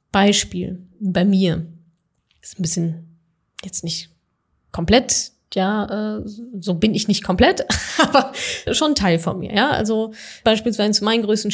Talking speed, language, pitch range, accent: 145 wpm, German, 180-220 Hz, German